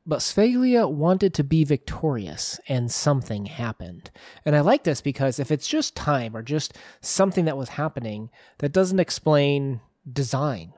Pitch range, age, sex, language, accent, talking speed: 120-150 Hz, 30-49, male, English, American, 155 wpm